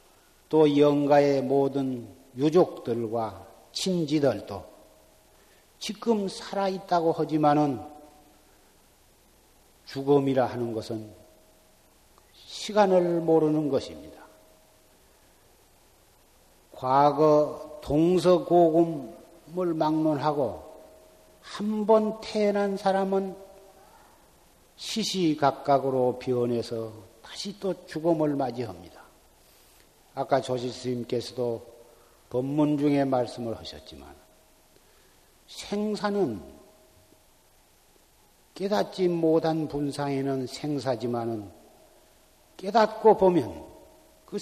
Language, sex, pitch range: Korean, male, 130-190 Hz